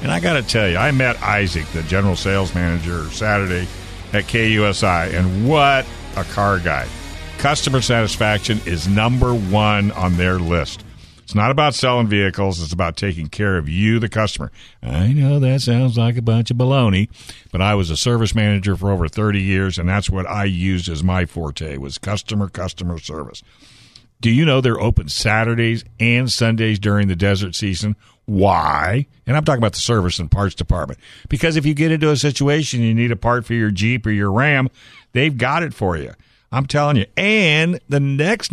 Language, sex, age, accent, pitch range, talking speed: English, male, 60-79, American, 95-120 Hz, 190 wpm